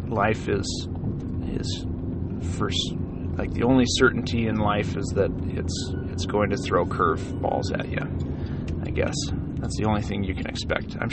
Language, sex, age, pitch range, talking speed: English, male, 30-49, 95-130 Hz, 165 wpm